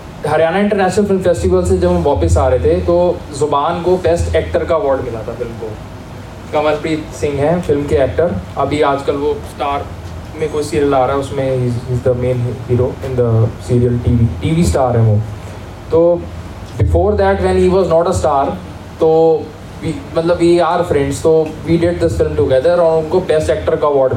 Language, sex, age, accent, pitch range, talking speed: Hindi, male, 20-39, native, 105-170 Hz, 190 wpm